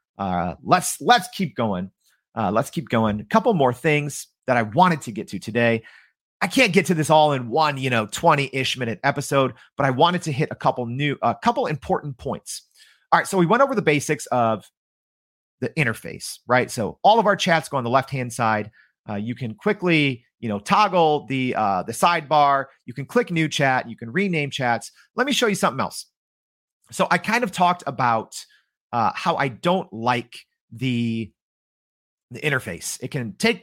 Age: 30-49